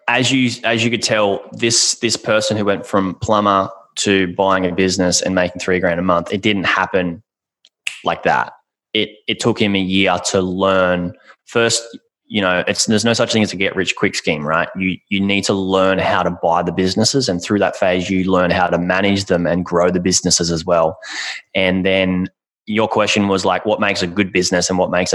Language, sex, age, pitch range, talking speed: English, male, 20-39, 90-100 Hz, 215 wpm